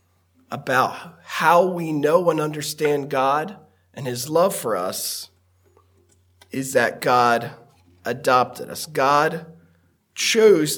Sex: male